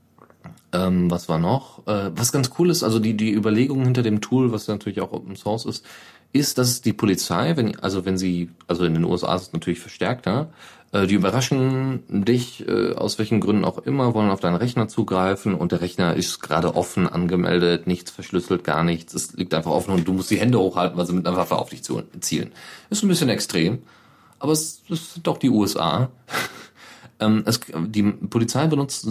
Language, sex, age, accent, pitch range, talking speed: German, male, 30-49, German, 90-125 Hz, 200 wpm